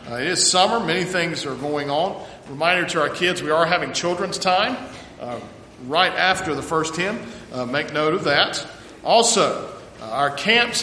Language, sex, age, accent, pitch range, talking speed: English, male, 40-59, American, 145-175 Hz, 175 wpm